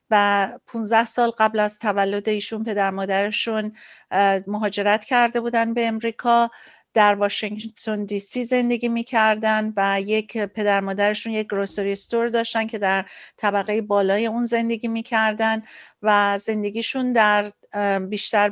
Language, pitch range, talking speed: Persian, 200-230 Hz, 125 wpm